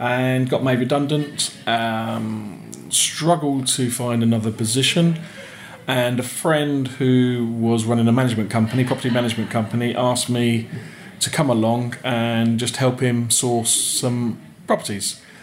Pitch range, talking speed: 115-130 Hz, 130 wpm